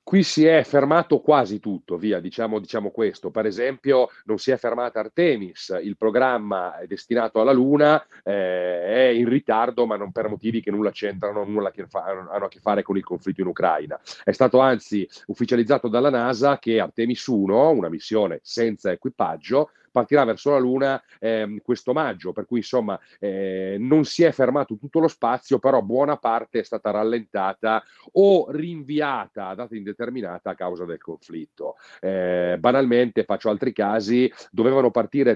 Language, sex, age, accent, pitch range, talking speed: Italian, male, 40-59, native, 105-130 Hz, 170 wpm